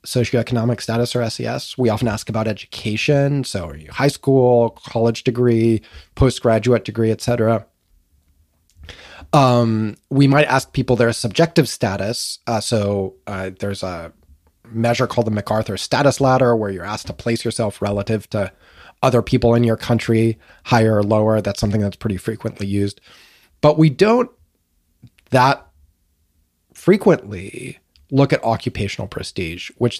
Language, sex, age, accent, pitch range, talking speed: English, male, 30-49, American, 100-125 Hz, 140 wpm